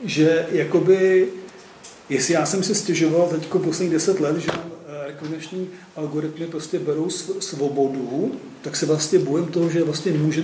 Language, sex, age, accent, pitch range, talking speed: Czech, male, 40-59, native, 150-175 Hz, 150 wpm